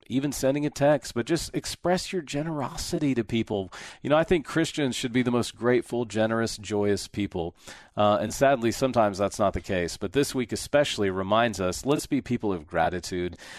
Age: 40-59